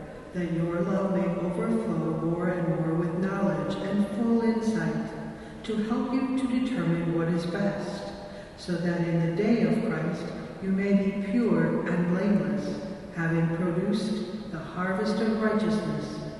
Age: 60-79